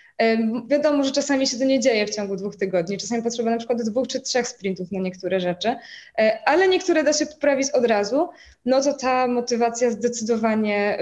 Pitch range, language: 210-275 Hz, Polish